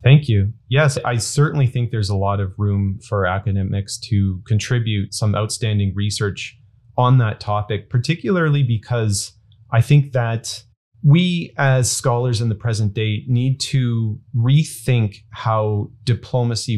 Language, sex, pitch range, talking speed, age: English, male, 105-125 Hz, 135 wpm, 30-49